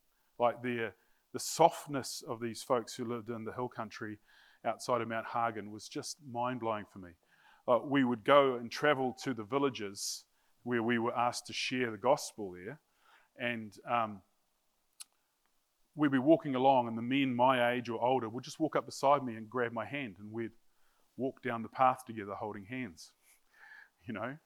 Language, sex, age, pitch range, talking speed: English, male, 30-49, 115-140 Hz, 180 wpm